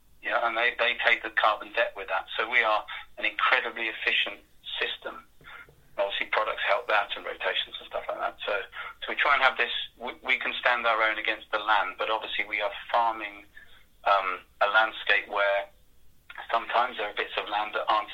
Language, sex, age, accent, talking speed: English, male, 30-49, British, 205 wpm